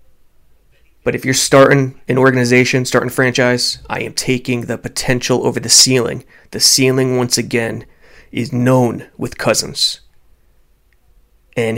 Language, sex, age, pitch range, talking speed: English, male, 20-39, 105-130 Hz, 130 wpm